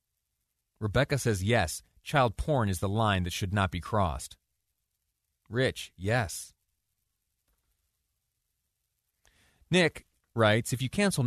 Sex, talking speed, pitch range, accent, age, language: male, 105 wpm, 95-125 Hz, American, 30-49, English